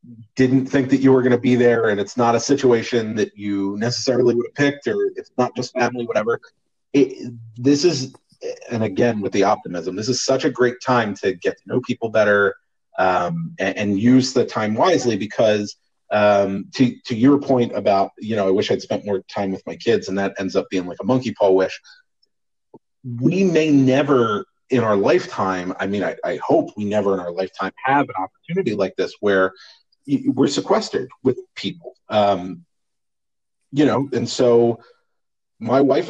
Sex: male